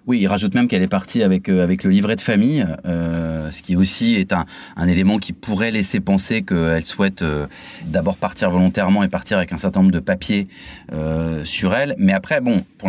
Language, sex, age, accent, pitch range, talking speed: French, male, 30-49, French, 90-105 Hz, 215 wpm